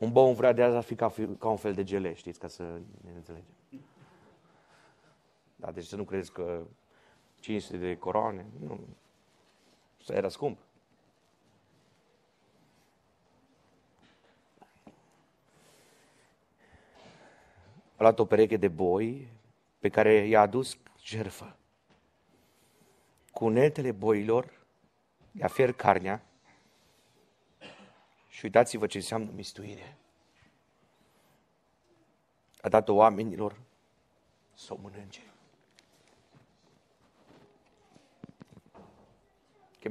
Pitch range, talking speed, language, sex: 100-115 Hz, 90 wpm, Romanian, male